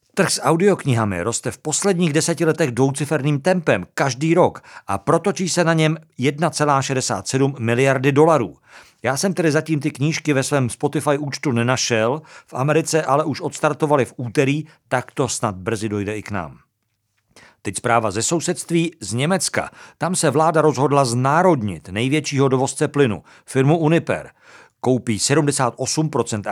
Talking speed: 145 wpm